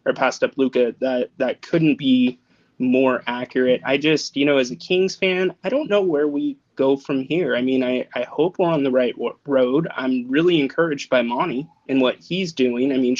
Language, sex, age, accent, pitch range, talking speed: English, male, 20-39, American, 125-155 Hz, 220 wpm